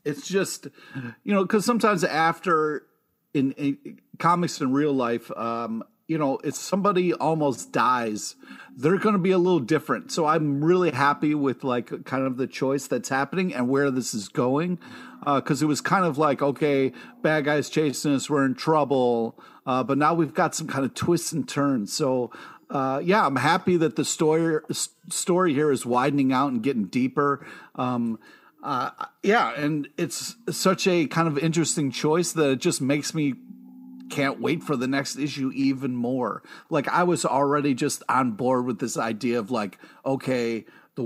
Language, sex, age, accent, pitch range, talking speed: English, male, 50-69, American, 125-160 Hz, 180 wpm